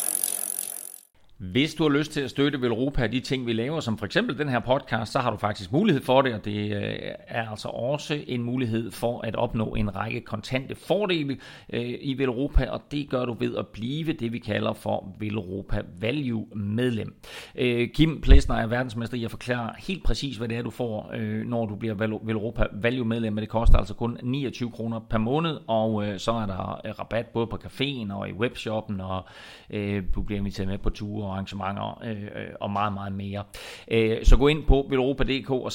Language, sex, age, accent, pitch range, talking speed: Danish, male, 30-49, native, 105-125 Hz, 200 wpm